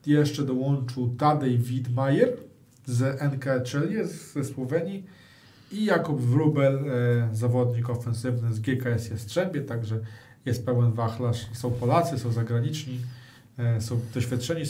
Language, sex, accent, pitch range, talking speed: Polish, male, native, 125-155 Hz, 115 wpm